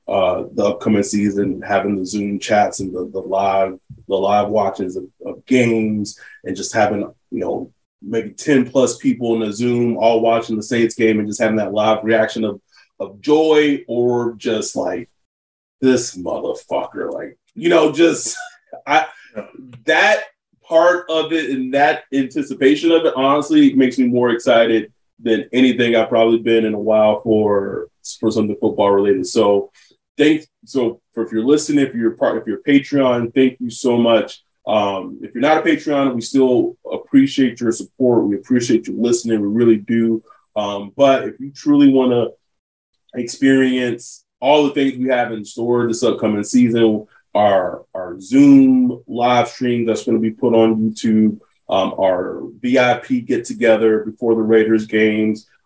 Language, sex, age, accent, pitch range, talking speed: English, male, 30-49, American, 110-135 Hz, 165 wpm